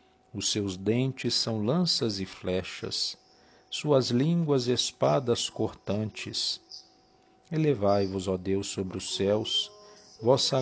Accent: Brazilian